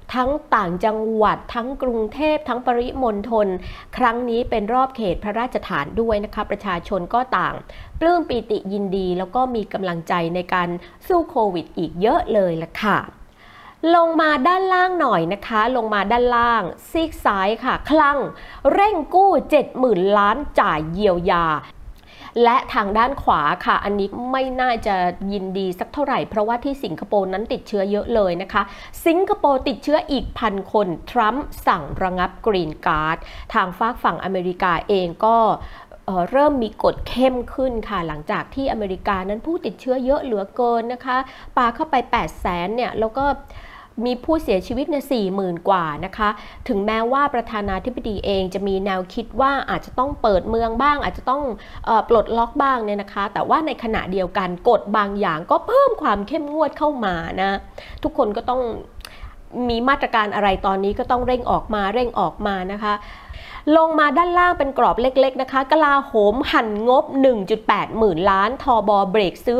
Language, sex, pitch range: Thai, female, 200-265 Hz